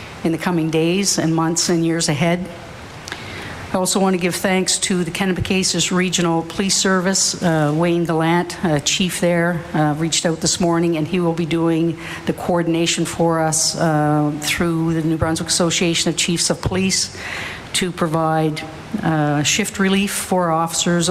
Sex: female